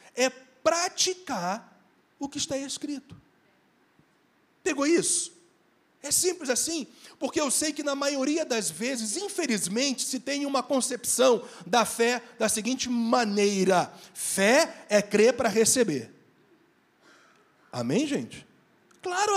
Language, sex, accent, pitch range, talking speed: Portuguese, male, Brazilian, 190-275 Hz, 120 wpm